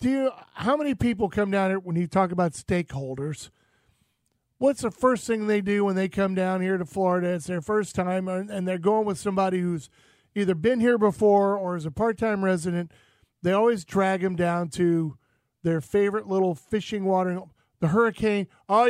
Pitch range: 175-225 Hz